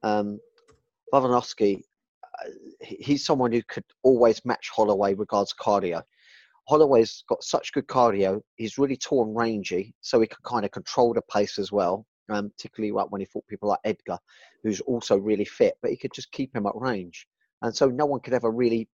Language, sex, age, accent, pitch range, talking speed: English, male, 30-49, British, 105-130 Hz, 185 wpm